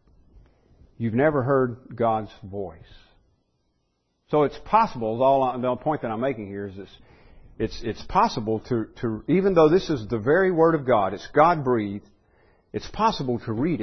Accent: American